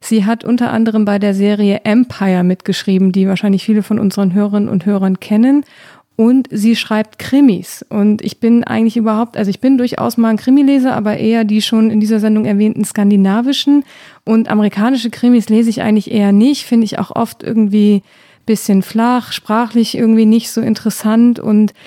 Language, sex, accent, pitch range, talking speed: German, female, German, 210-235 Hz, 175 wpm